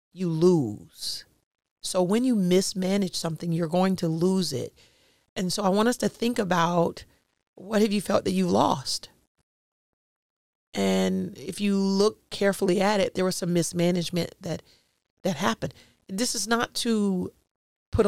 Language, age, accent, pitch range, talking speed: English, 40-59, American, 175-210 Hz, 155 wpm